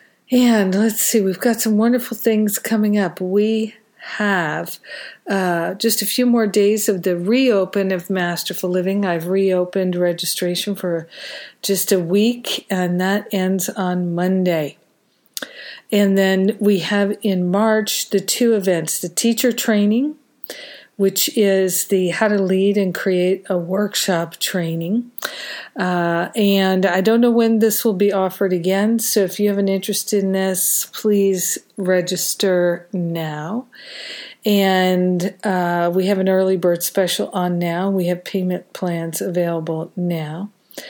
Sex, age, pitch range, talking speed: female, 50-69, 175-210 Hz, 140 wpm